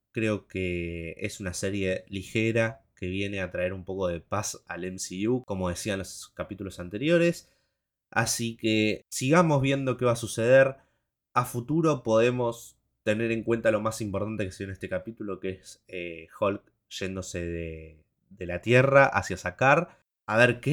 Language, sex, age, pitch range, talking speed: Spanish, male, 20-39, 95-125 Hz, 170 wpm